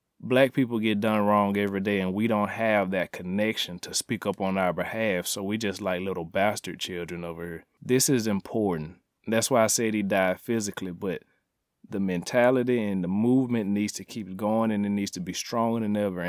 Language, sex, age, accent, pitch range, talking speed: English, male, 30-49, American, 75-100 Hz, 205 wpm